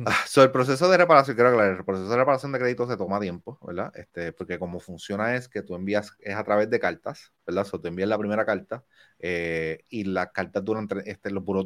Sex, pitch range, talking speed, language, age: male, 100-120 Hz, 240 wpm, Spanish, 30-49